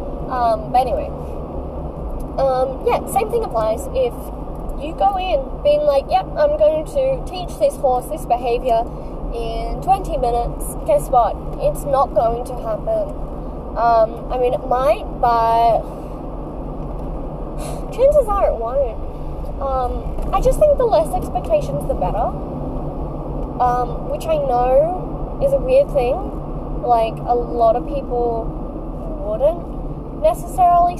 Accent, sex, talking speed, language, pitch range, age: Australian, female, 130 wpm, English, 235-325 Hz, 10-29